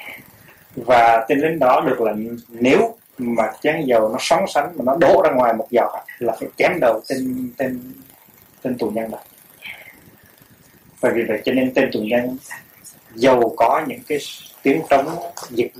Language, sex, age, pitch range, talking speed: Vietnamese, male, 20-39, 115-145 Hz, 170 wpm